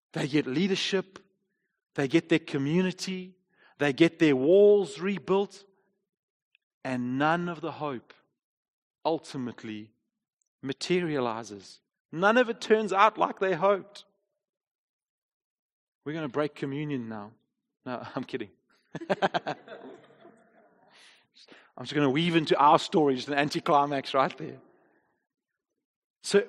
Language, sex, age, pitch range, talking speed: English, male, 40-59, 155-210 Hz, 115 wpm